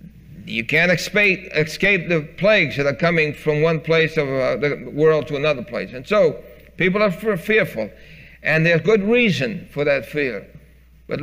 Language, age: English, 60-79